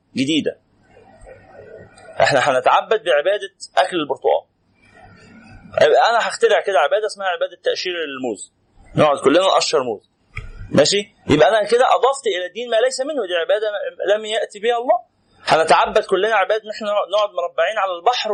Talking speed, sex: 140 wpm, male